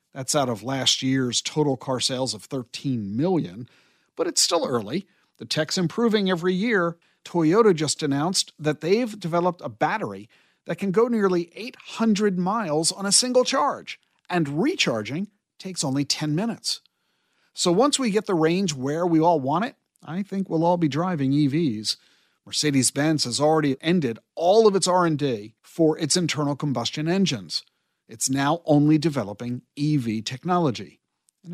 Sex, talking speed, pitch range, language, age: male, 155 wpm, 135-185 Hz, English, 50-69